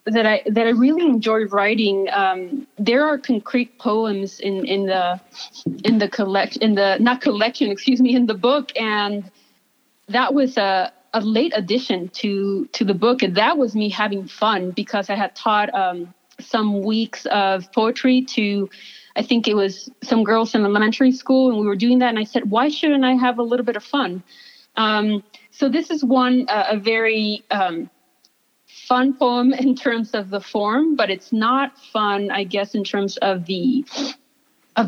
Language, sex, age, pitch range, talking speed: English, female, 30-49, 205-260 Hz, 185 wpm